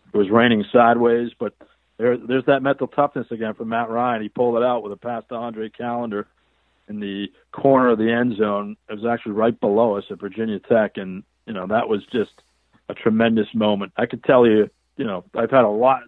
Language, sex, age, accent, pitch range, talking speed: English, male, 50-69, American, 110-125 Hz, 220 wpm